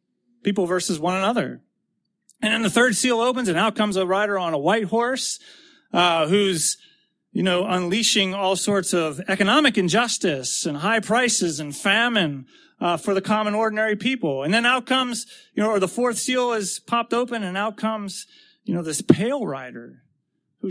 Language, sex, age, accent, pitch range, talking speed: English, male, 30-49, American, 185-240 Hz, 180 wpm